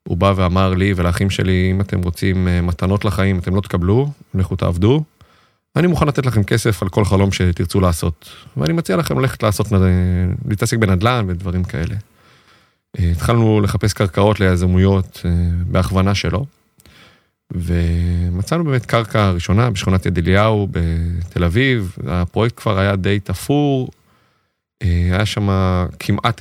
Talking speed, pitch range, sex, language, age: 135 wpm, 90-110 Hz, male, Hebrew, 30-49